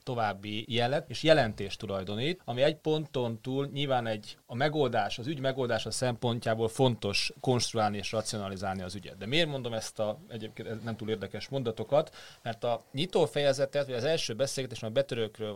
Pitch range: 110-140 Hz